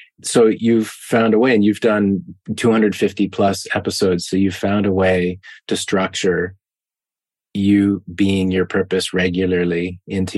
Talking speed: 140 wpm